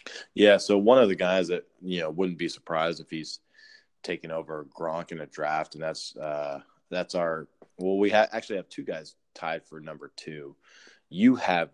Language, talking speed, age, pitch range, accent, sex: English, 190 wpm, 20-39, 75-85 Hz, American, male